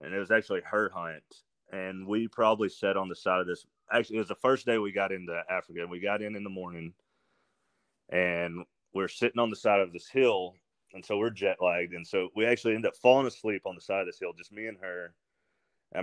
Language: English